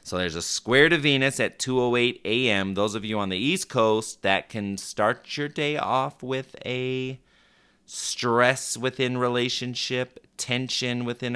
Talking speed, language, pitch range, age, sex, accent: 155 wpm, English, 95-125 Hz, 30-49, male, American